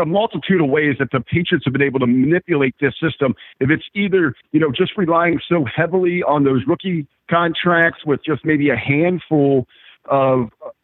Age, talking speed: 50-69, 185 wpm